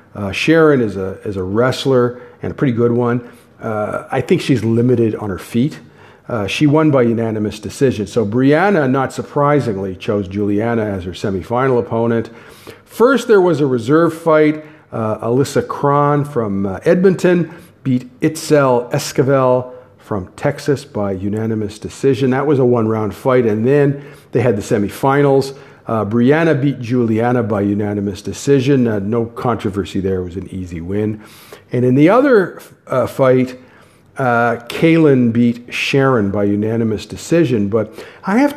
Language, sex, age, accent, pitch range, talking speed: English, male, 50-69, American, 105-140 Hz, 150 wpm